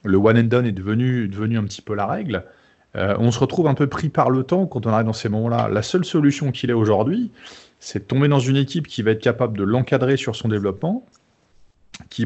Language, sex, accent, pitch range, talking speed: French, male, French, 100-130 Hz, 245 wpm